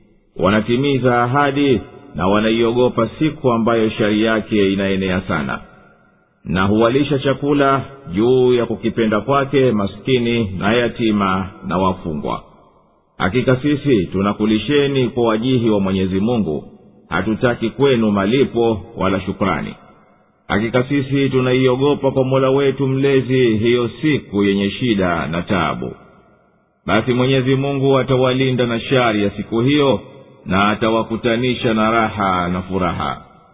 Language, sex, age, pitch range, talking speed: Swahili, male, 50-69, 105-130 Hz, 110 wpm